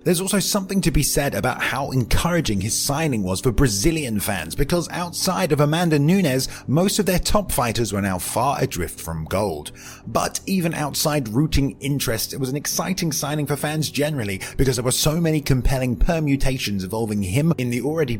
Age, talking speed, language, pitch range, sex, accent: 30-49, 185 wpm, English, 100-155 Hz, male, British